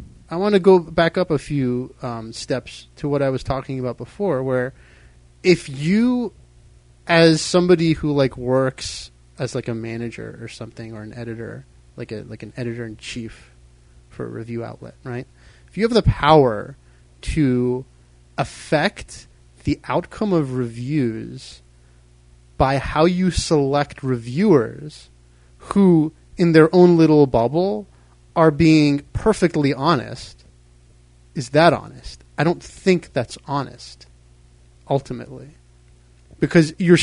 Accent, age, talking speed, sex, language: American, 30-49, 130 wpm, male, English